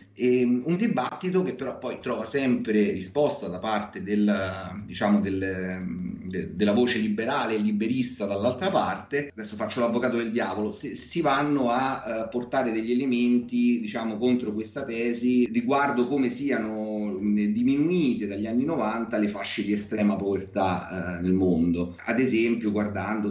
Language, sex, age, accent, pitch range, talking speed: Italian, male, 30-49, native, 100-125 Hz, 145 wpm